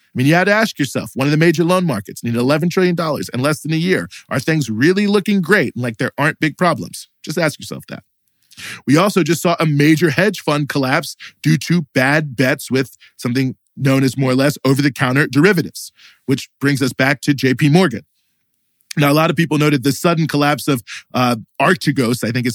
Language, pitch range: English, 130-165 Hz